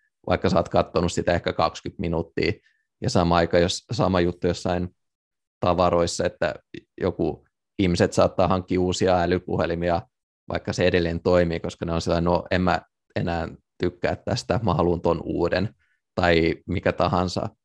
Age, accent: 20-39, native